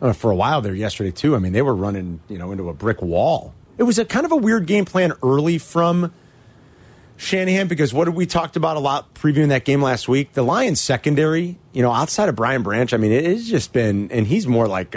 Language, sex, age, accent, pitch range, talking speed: English, male, 30-49, American, 100-150 Hz, 245 wpm